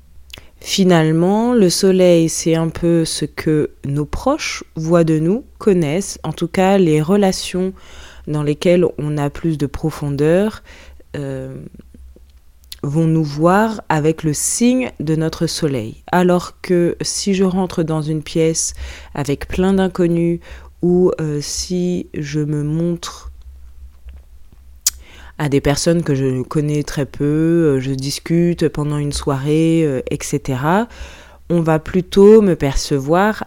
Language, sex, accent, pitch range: French, female, French, 140-185 Hz